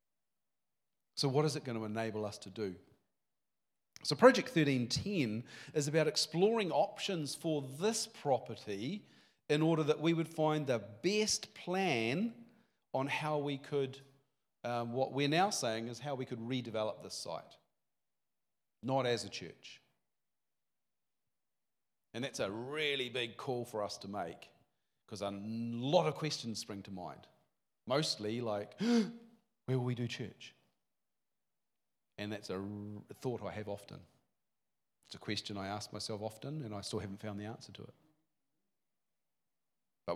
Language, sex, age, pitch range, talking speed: English, male, 40-59, 105-150 Hz, 145 wpm